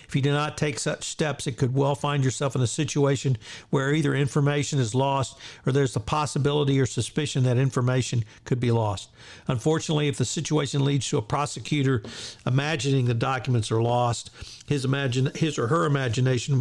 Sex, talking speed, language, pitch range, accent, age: male, 180 wpm, English, 120-145 Hz, American, 50-69